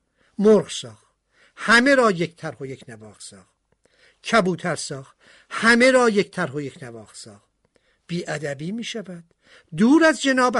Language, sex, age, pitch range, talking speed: Persian, male, 50-69, 145-220 Hz, 155 wpm